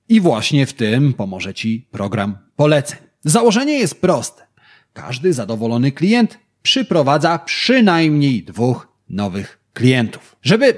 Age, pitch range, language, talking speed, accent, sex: 30-49, 115-170 Hz, Polish, 110 wpm, native, male